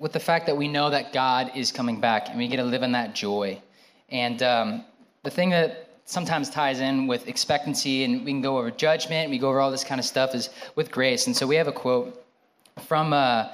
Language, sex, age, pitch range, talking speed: English, male, 20-39, 120-155 Hz, 245 wpm